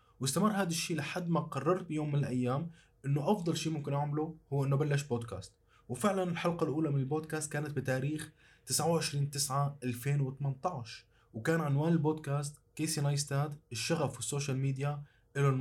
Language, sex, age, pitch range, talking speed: Arabic, male, 20-39, 125-160 Hz, 135 wpm